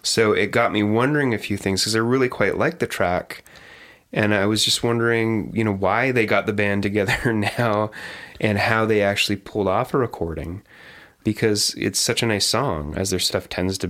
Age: 30-49